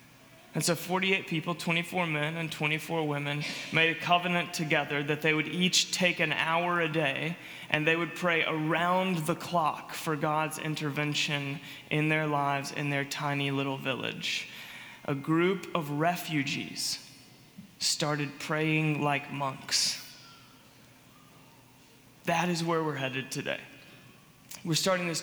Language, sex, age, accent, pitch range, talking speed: English, male, 20-39, American, 145-175 Hz, 135 wpm